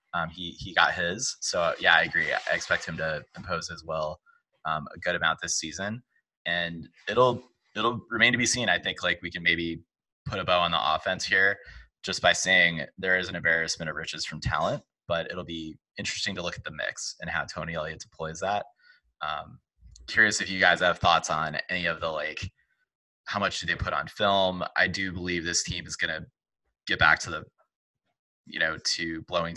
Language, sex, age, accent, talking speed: English, male, 20-39, American, 210 wpm